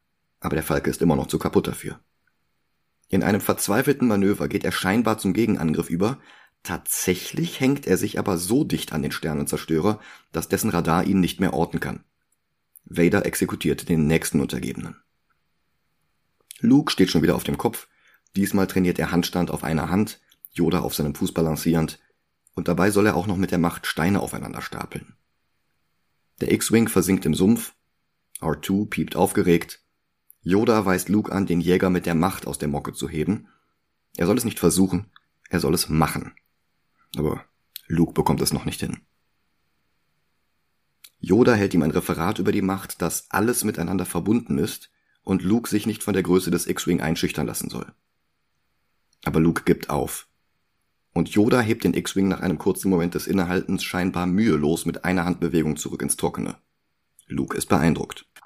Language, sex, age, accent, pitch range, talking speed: German, male, 40-59, German, 80-95 Hz, 165 wpm